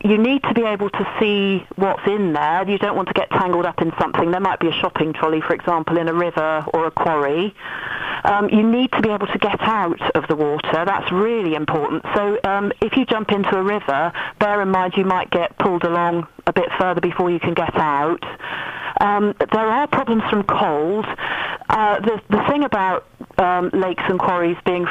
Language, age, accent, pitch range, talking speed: English, 40-59, British, 170-205 Hz, 210 wpm